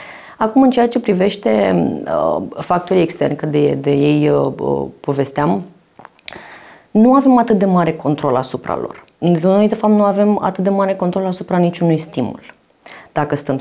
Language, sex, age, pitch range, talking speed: Romanian, female, 30-49, 140-185 Hz, 170 wpm